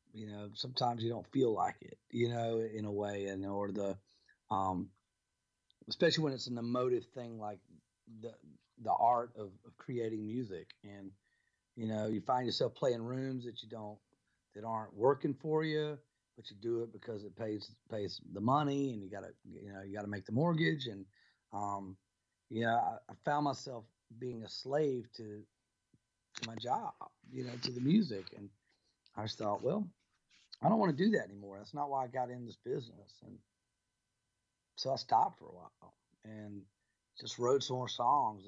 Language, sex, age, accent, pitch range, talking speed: English, male, 40-59, American, 105-125 Hz, 180 wpm